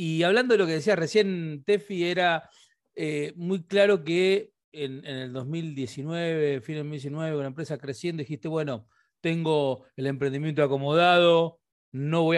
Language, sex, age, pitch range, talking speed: Spanish, male, 40-59, 140-195 Hz, 155 wpm